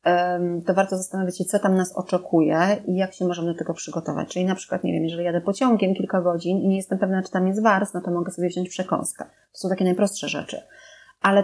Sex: female